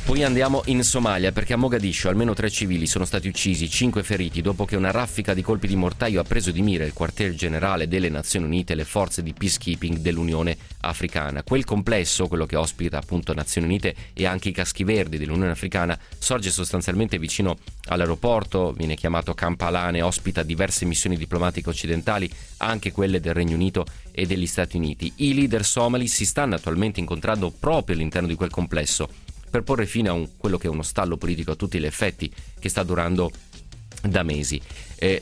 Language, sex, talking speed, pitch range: Italian, male, 185 wpm, 85-100 Hz